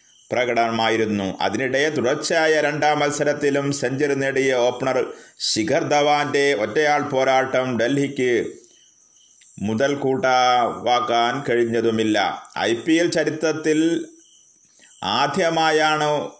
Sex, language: male, Malayalam